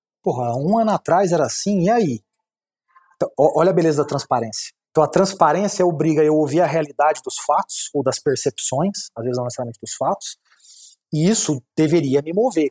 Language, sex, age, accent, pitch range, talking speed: Portuguese, male, 30-49, Brazilian, 150-195 Hz, 185 wpm